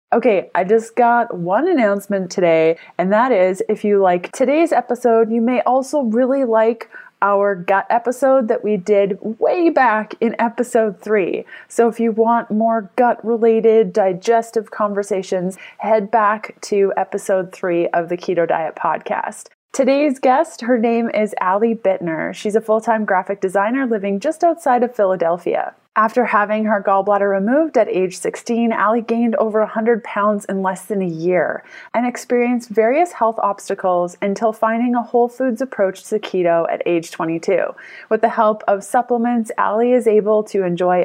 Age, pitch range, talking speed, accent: 20-39, 195-235 Hz, 160 wpm, American